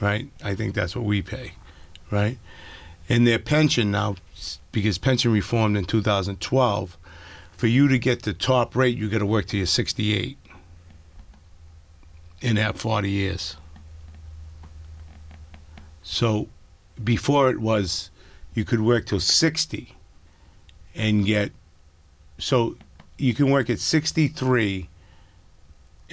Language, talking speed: English, 115 wpm